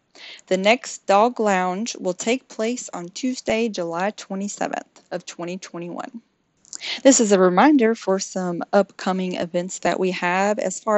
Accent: American